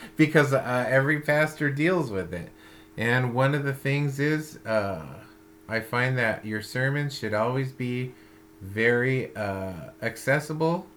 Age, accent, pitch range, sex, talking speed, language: 30-49, American, 105-140 Hz, male, 135 wpm, English